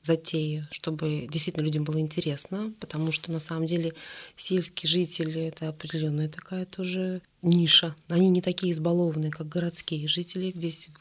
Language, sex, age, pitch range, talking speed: Russian, female, 20-39, 155-180 Hz, 155 wpm